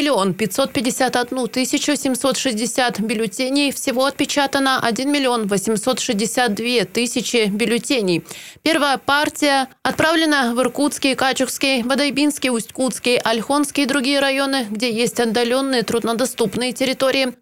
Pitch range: 240-285 Hz